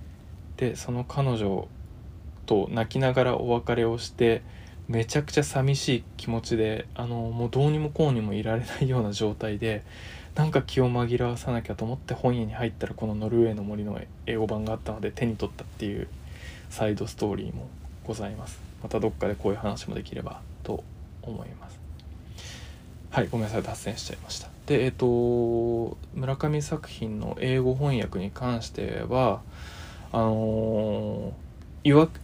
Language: Japanese